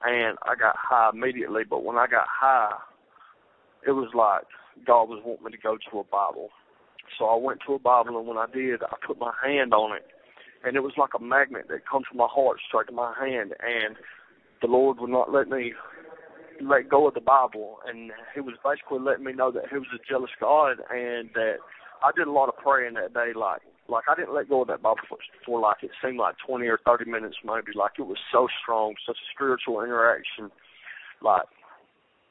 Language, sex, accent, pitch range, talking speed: English, male, American, 115-135 Hz, 220 wpm